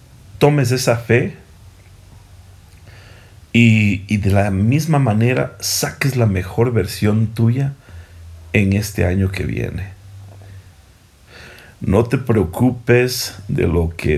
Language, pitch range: Spanish, 90-115 Hz